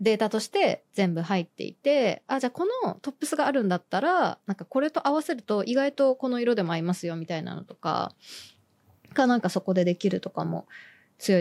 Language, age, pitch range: Japanese, 20-39, 180-265 Hz